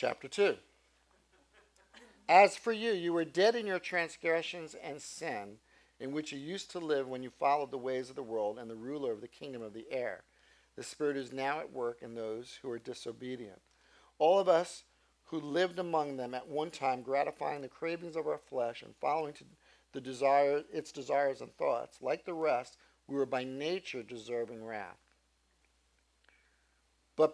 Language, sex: English, male